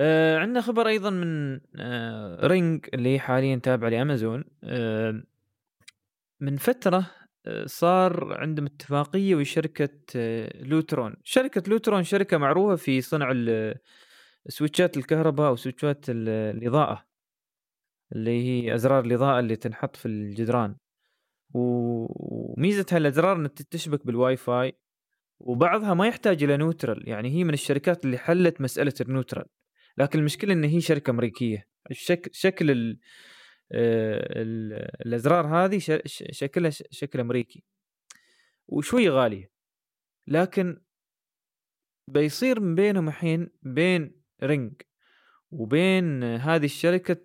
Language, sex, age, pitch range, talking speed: Arabic, male, 20-39, 125-175 Hz, 115 wpm